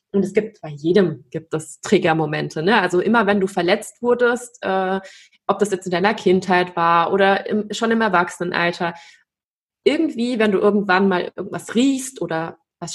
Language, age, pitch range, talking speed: German, 20-39, 185-215 Hz, 170 wpm